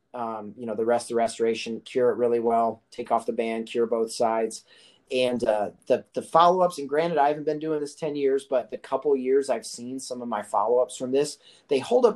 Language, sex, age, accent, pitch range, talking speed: English, male, 30-49, American, 115-140 Hz, 240 wpm